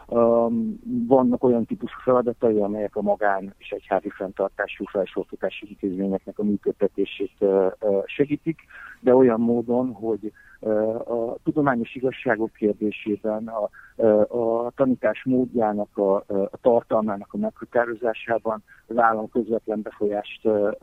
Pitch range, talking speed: 105-120 Hz, 120 wpm